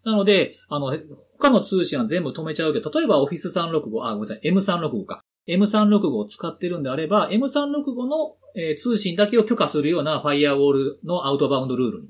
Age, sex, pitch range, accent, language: 40-59, male, 130-215 Hz, native, Japanese